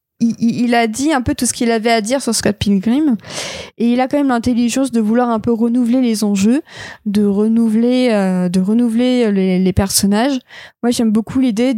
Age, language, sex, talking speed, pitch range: 20-39, French, female, 200 wpm, 210-250 Hz